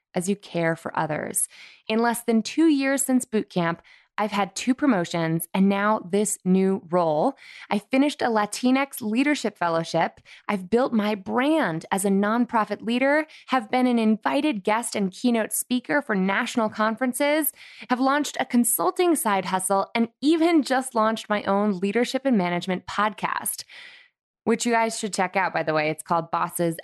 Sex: female